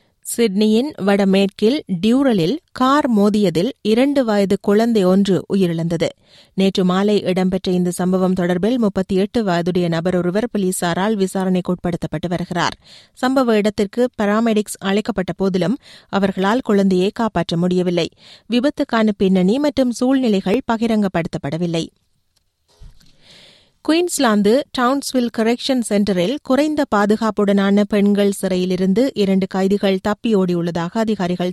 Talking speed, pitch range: 95 wpm, 180-225 Hz